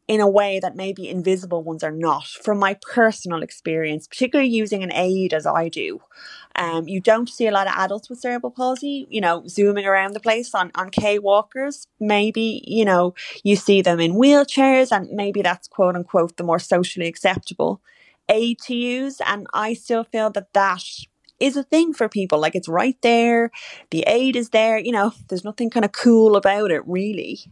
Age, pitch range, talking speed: 20-39, 180-230 Hz, 195 wpm